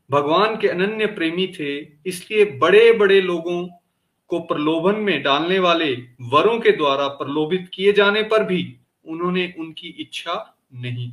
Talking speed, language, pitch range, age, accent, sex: 140 wpm, Hindi, 150-205 Hz, 40-59, native, male